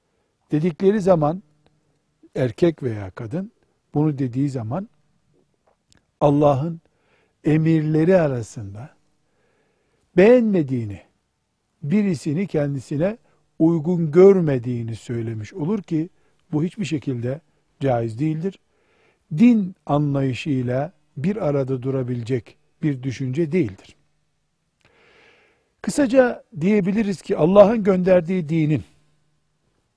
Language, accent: Turkish, native